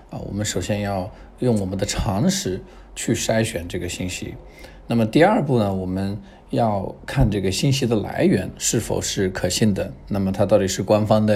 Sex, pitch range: male, 100-120 Hz